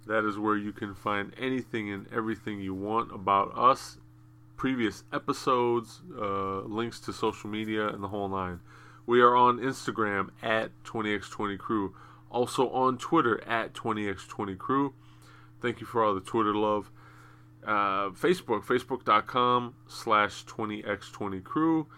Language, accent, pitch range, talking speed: English, American, 95-115 Hz, 130 wpm